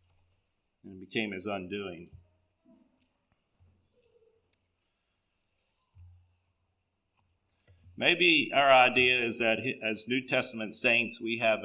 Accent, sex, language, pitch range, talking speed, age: American, male, English, 110-150 Hz, 80 wpm, 50-69